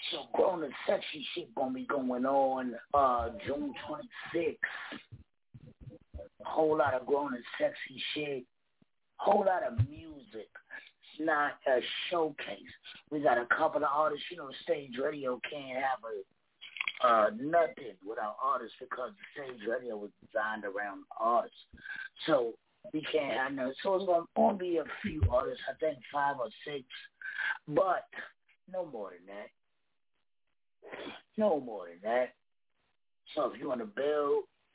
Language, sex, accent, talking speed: English, male, American, 140 wpm